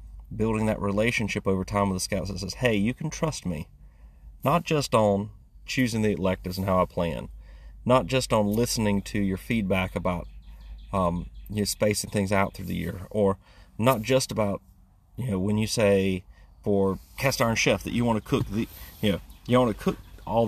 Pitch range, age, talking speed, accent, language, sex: 90-115 Hz, 30-49, 200 wpm, American, English, male